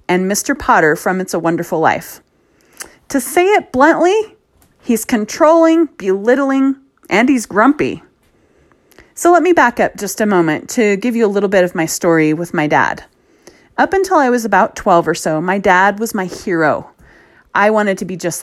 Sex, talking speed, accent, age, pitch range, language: female, 180 wpm, American, 30-49, 185-275 Hz, English